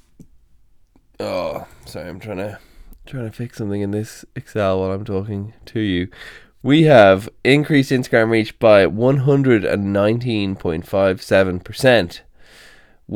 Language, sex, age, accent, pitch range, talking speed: English, male, 20-39, Irish, 85-110 Hz, 110 wpm